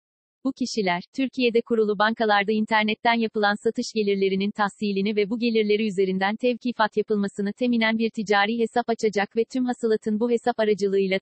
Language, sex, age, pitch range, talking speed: Turkish, female, 40-59, 200-230 Hz, 145 wpm